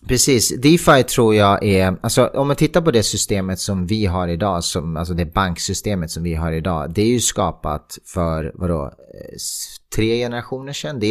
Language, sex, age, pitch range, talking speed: Swedish, male, 30-49, 90-115 Hz, 185 wpm